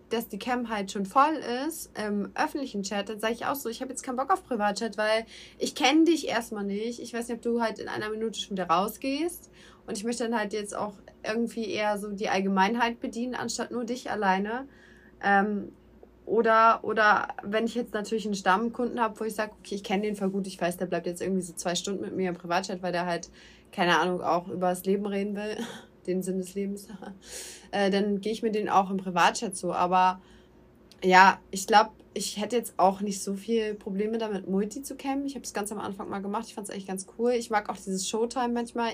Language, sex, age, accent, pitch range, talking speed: German, female, 20-39, German, 190-230 Hz, 230 wpm